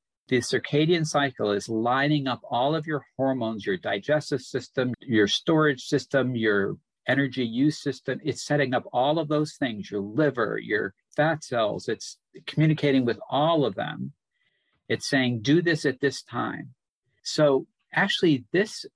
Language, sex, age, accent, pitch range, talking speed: English, male, 50-69, American, 125-150 Hz, 150 wpm